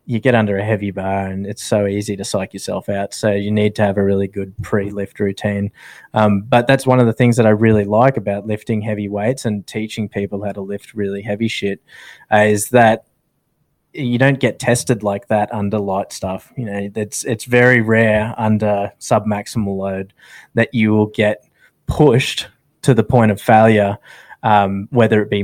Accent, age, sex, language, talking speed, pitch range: Australian, 20-39, male, English, 200 wpm, 100-115 Hz